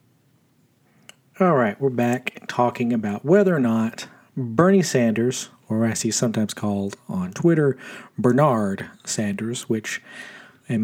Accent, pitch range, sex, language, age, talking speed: American, 115-140 Hz, male, English, 40-59, 120 wpm